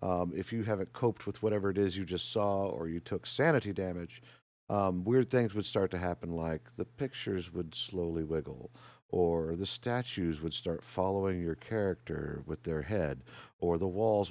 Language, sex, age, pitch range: English, male, 50-69, 90-120 Hz